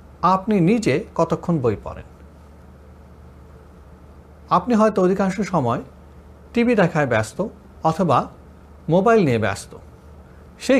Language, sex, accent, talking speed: Bengali, male, native, 95 wpm